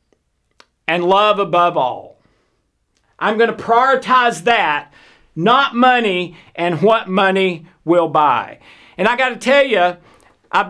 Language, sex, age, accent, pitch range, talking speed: English, male, 50-69, American, 175-225 Hz, 130 wpm